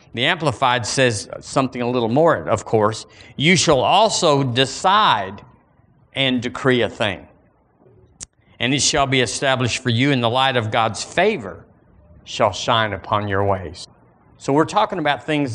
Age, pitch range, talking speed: 50-69, 105-130 Hz, 155 wpm